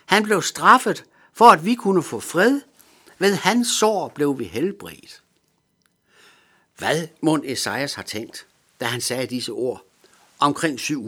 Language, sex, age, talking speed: Danish, male, 60-79, 145 wpm